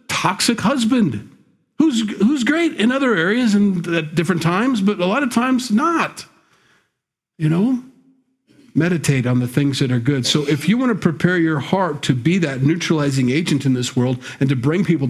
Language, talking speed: English, 185 wpm